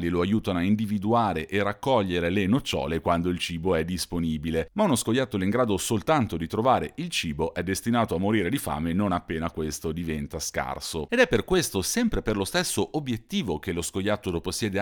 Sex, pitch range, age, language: male, 80-110 Hz, 40-59, Italian